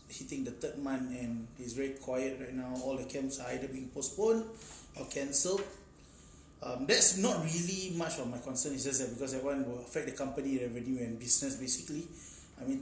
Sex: male